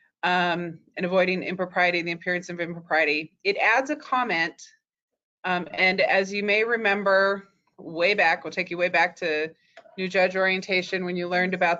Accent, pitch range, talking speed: American, 185-230 Hz, 170 wpm